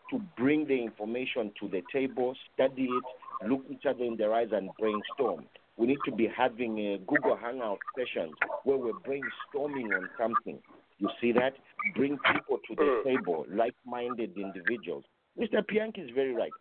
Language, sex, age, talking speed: English, male, 50-69, 165 wpm